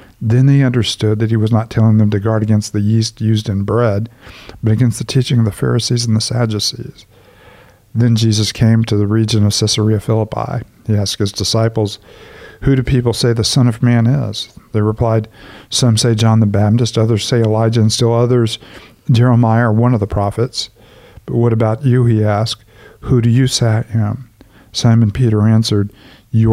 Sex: male